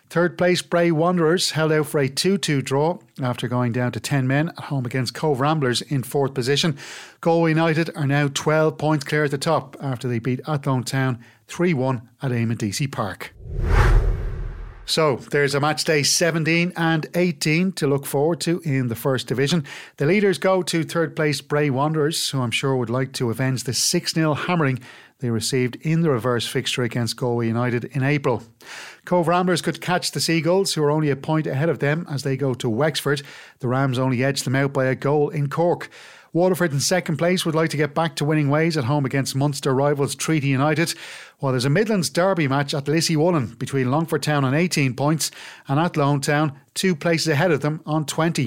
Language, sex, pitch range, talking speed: English, male, 135-165 Hz, 205 wpm